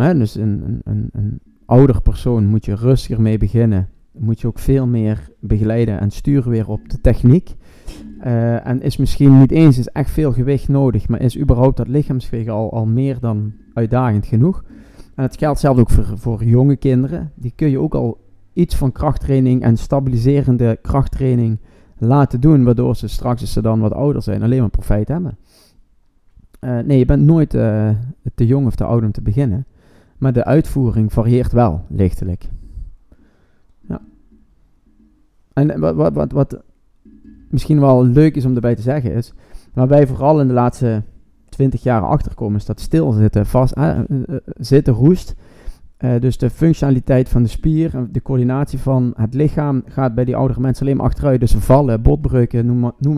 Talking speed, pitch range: 180 wpm, 110-135 Hz